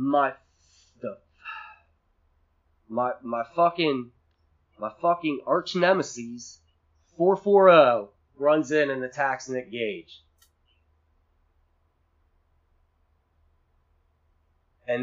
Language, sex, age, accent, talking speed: English, male, 30-49, American, 70 wpm